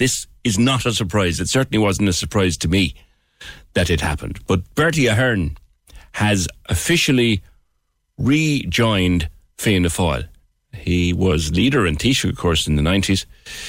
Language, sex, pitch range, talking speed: English, male, 80-110 Hz, 145 wpm